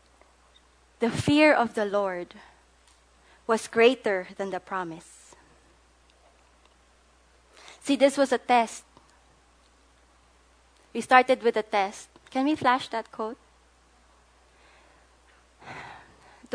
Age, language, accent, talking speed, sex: 20-39, English, Filipino, 90 wpm, female